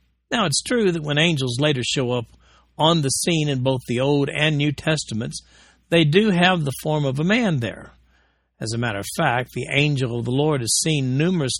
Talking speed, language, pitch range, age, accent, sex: 210 wpm, English, 120-155 Hz, 60-79, American, male